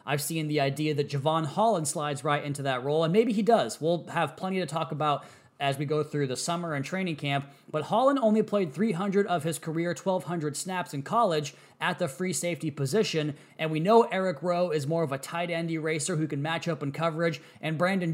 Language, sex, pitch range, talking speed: English, male, 145-180 Hz, 220 wpm